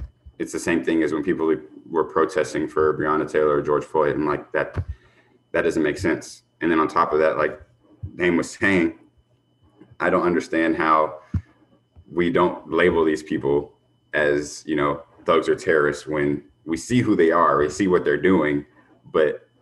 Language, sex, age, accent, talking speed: English, male, 30-49, American, 180 wpm